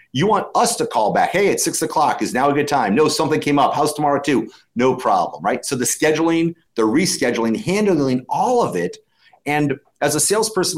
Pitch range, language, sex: 125-165 Hz, English, male